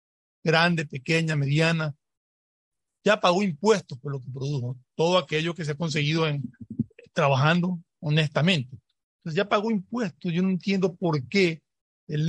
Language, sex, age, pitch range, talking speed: Spanish, male, 50-69, 135-170 Hz, 140 wpm